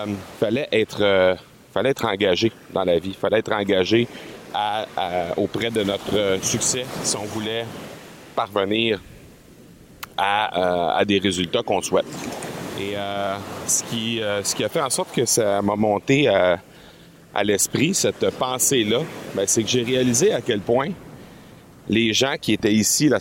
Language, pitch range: French, 100-130 Hz